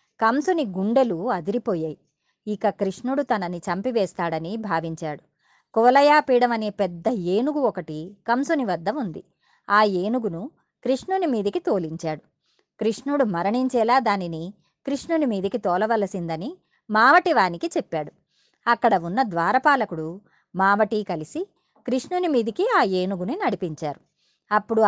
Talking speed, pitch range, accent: 95 wpm, 185-270 Hz, native